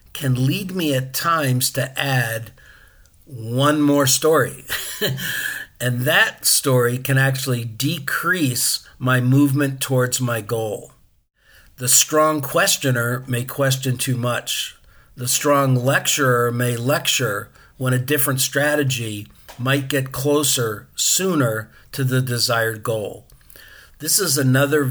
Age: 50-69